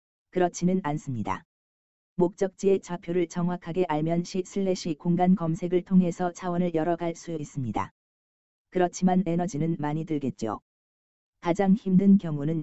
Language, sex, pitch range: Korean, female, 145-180 Hz